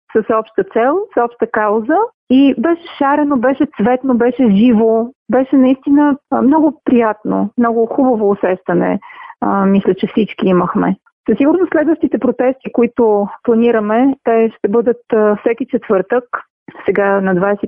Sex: female